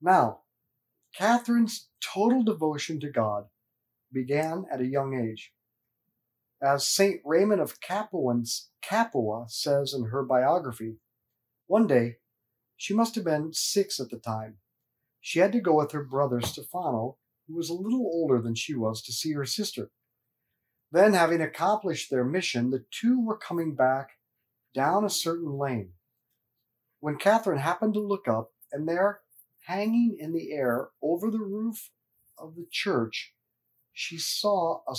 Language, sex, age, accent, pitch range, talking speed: English, male, 50-69, American, 120-185 Hz, 145 wpm